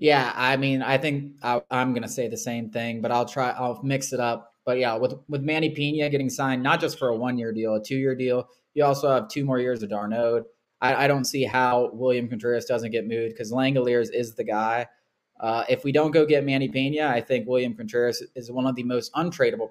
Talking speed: 240 wpm